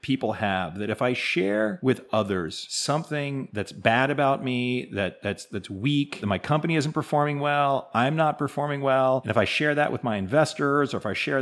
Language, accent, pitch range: English, American, 100-135 Hz